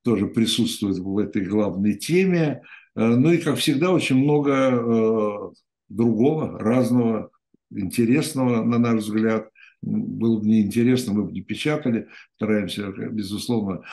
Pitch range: 105-125 Hz